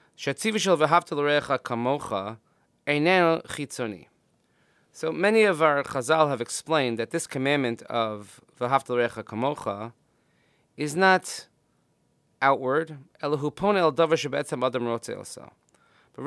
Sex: male